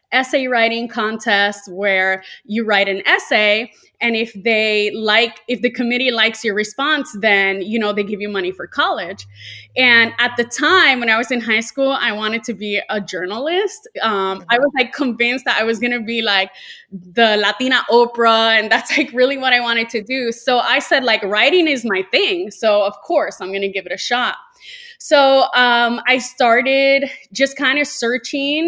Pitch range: 205-260 Hz